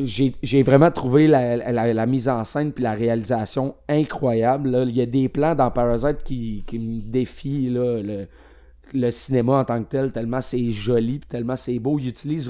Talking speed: 205 wpm